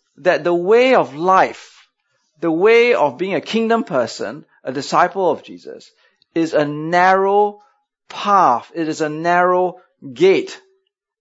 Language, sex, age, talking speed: English, male, 30-49, 135 wpm